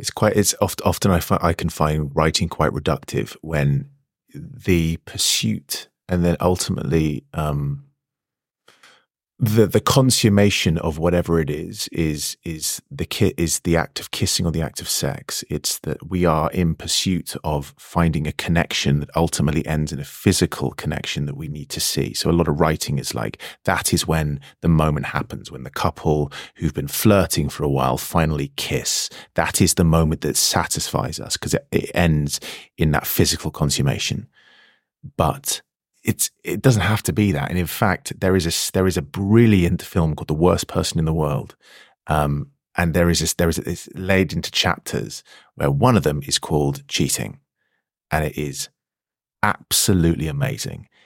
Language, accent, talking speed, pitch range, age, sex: English, British, 175 wpm, 75-90 Hz, 30-49, male